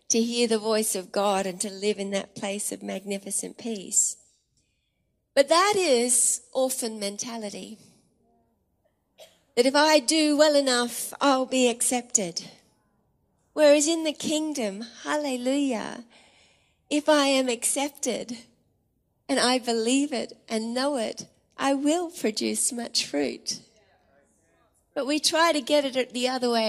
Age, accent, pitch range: 40-59, Australian, 230-285 Hz